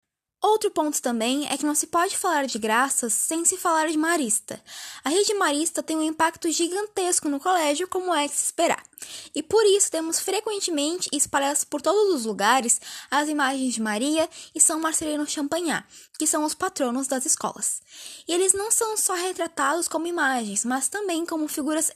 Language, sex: Portuguese, female